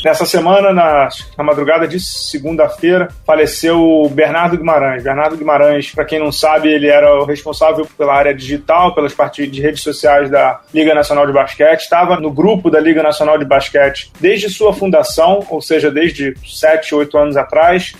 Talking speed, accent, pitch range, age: 175 wpm, Brazilian, 145-175 Hz, 30-49